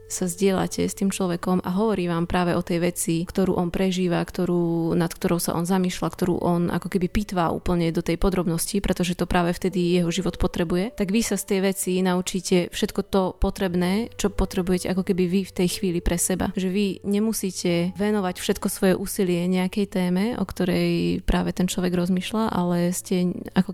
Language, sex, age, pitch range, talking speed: Slovak, female, 20-39, 180-200 Hz, 190 wpm